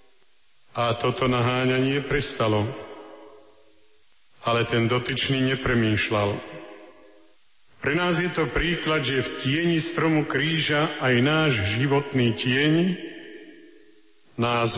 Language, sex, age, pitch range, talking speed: Slovak, male, 50-69, 115-145 Hz, 95 wpm